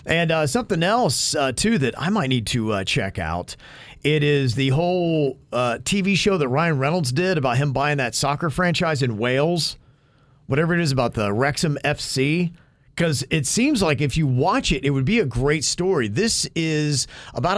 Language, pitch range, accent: English, 120-155 Hz, American